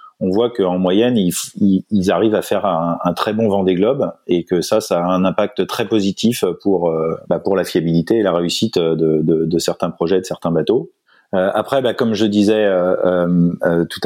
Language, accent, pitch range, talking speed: French, French, 85-105 Hz, 165 wpm